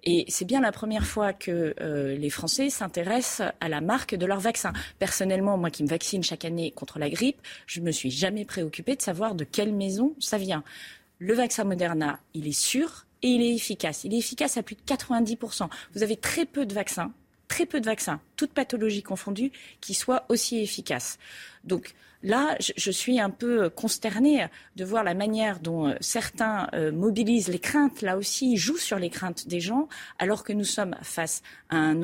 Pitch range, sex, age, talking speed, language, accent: 180-245 Hz, female, 30-49, 195 wpm, French, French